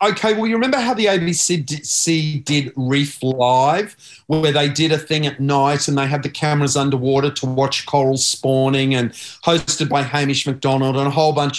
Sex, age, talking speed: male, 40-59, 190 wpm